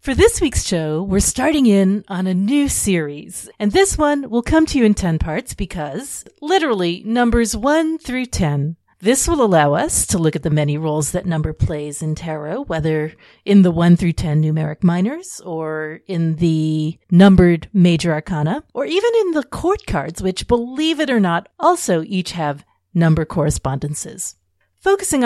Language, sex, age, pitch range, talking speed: English, female, 40-59, 155-235 Hz, 175 wpm